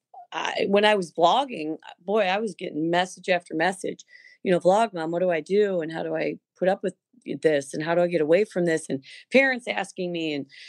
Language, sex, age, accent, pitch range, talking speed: English, female, 40-59, American, 170-215 Hz, 225 wpm